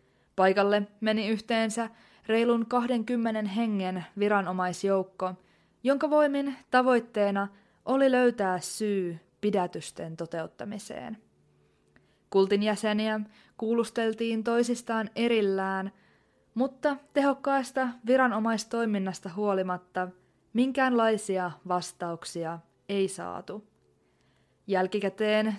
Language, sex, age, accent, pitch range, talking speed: Finnish, female, 20-39, native, 190-235 Hz, 70 wpm